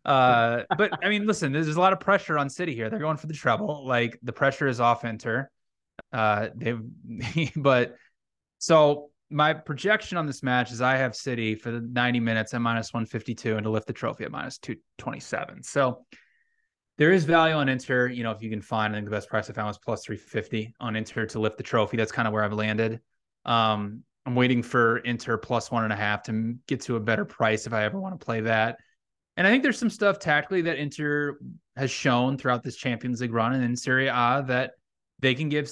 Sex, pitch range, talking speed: male, 115-140 Hz, 225 wpm